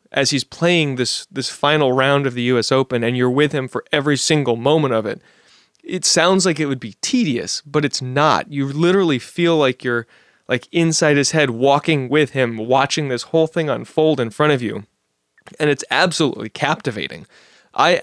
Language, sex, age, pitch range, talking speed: English, male, 20-39, 125-155 Hz, 190 wpm